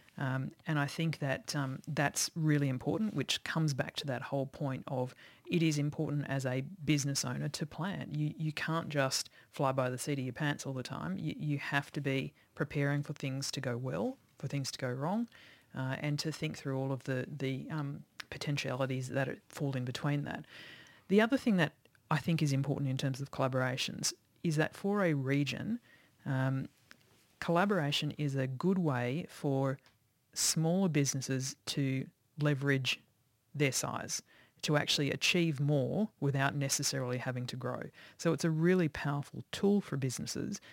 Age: 30-49